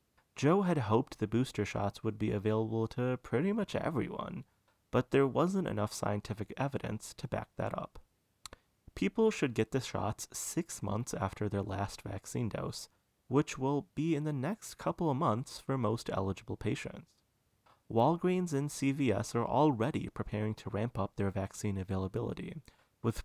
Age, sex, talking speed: 30-49, male, 155 wpm